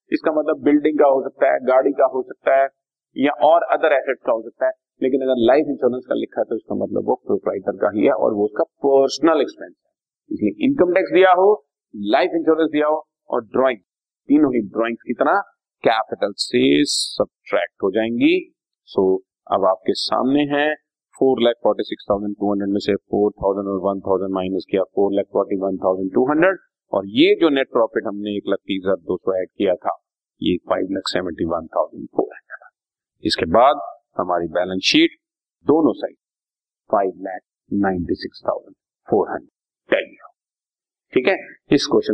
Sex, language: male, Hindi